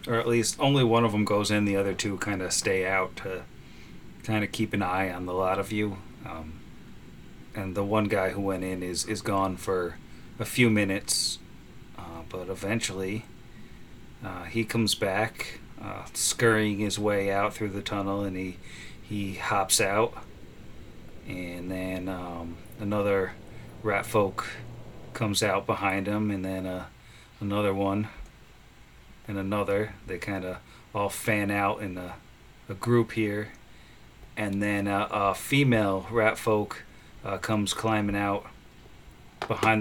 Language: English